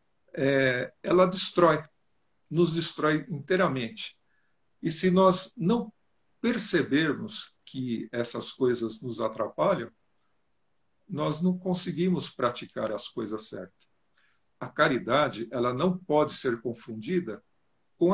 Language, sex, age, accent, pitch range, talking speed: Portuguese, male, 60-79, Brazilian, 130-185 Hz, 105 wpm